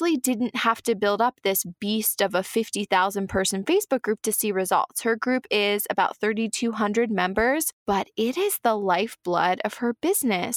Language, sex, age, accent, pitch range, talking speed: English, female, 20-39, American, 195-245 Hz, 170 wpm